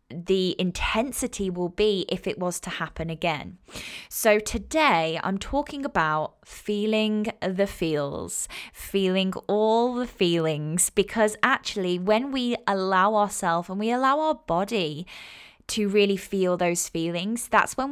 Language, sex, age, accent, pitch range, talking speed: English, female, 10-29, British, 175-235 Hz, 135 wpm